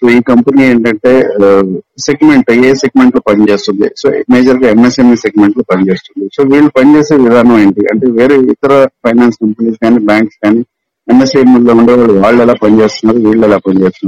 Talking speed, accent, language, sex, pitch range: 55 wpm, Indian, English, male, 105-135 Hz